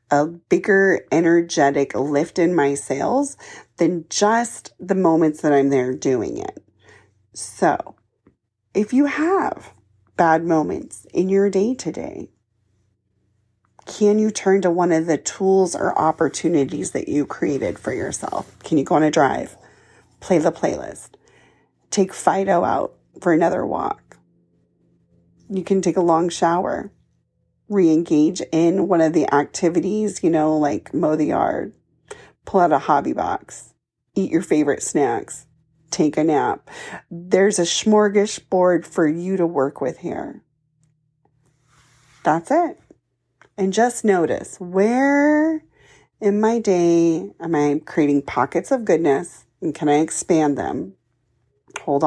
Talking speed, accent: 135 wpm, American